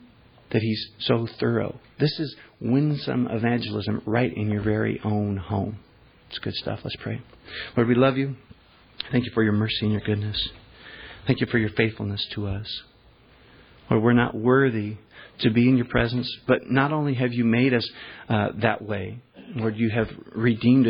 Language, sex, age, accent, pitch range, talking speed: English, male, 40-59, American, 105-120 Hz, 175 wpm